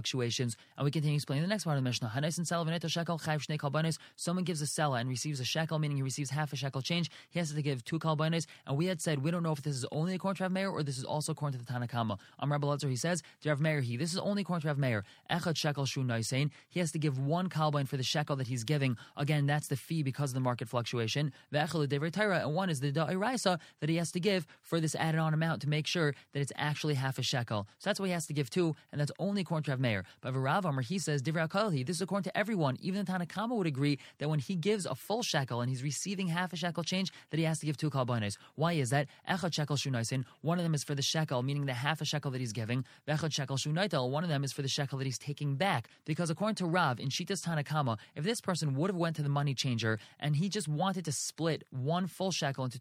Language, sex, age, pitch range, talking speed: English, male, 20-39, 135-170 Hz, 250 wpm